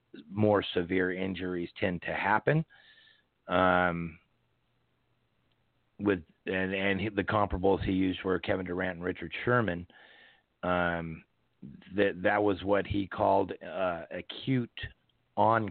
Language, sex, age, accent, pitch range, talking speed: English, male, 40-59, American, 90-100 Hz, 115 wpm